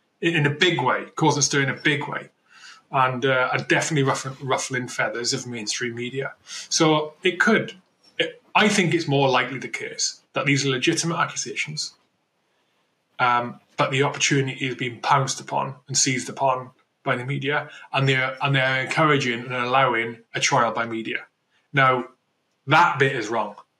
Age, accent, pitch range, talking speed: 20-39, British, 125-155 Hz, 165 wpm